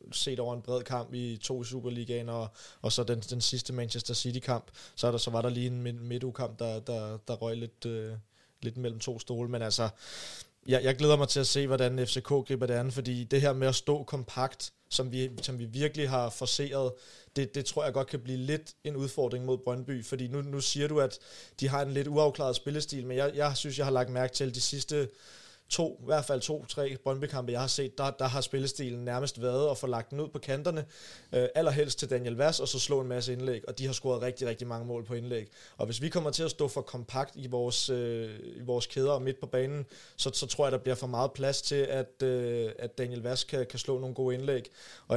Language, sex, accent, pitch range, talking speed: Danish, male, native, 125-140 Hz, 240 wpm